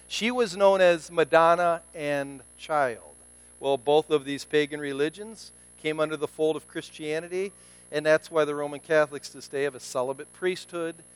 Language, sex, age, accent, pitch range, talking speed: English, male, 50-69, American, 125-195 Hz, 165 wpm